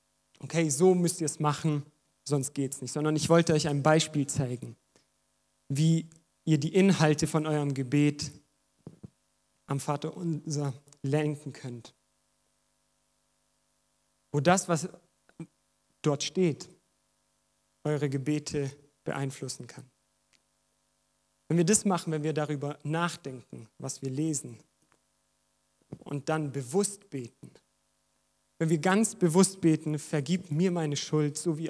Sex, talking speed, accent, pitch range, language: male, 120 wpm, German, 140-170 Hz, German